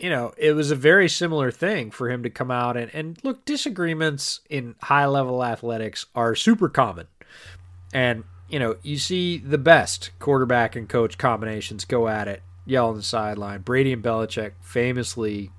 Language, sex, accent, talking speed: English, male, American, 175 wpm